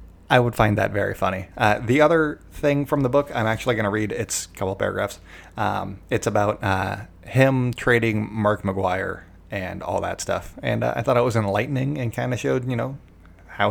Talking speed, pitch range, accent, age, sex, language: 215 wpm, 90-115 Hz, American, 20-39, male, English